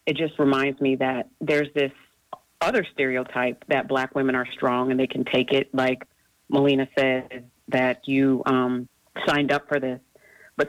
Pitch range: 130-145 Hz